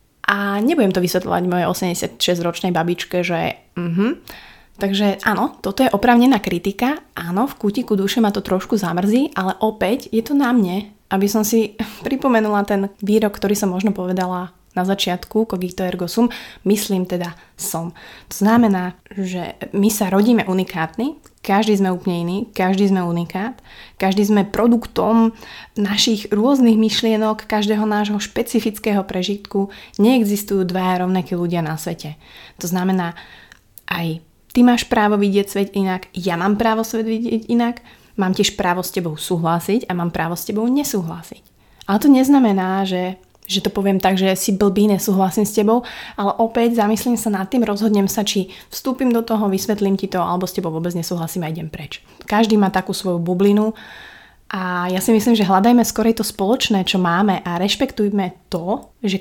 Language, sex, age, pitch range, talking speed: Slovak, female, 20-39, 185-220 Hz, 165 wpm